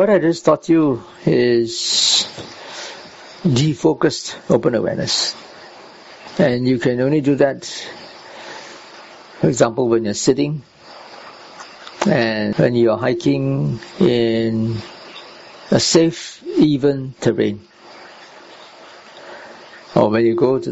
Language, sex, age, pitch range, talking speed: English, male, 60-79, 115-165 Hz, 100 wpm